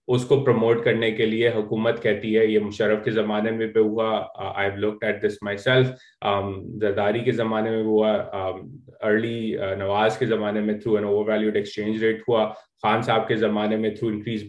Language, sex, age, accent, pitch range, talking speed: English, male, 20-39, Indian, 110-125 Hz, 100 wpm